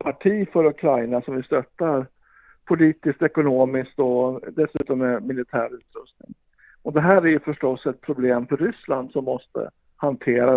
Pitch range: 130-165 Hz